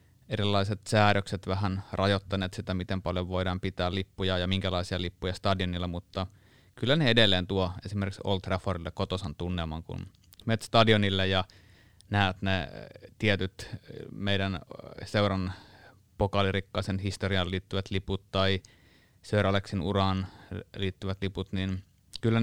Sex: male